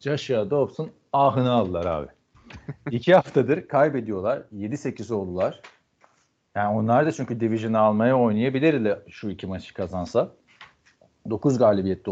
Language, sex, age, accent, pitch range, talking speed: Turkish, male, 40-59, native, 100-130 Hz, 120 wpm